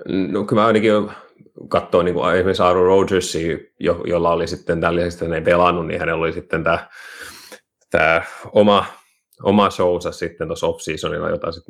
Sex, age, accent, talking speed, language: male, 30-49, native, 155 wpm, Finnish